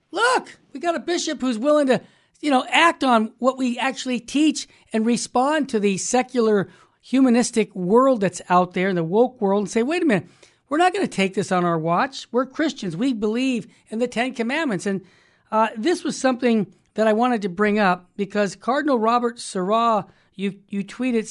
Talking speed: 195 wpm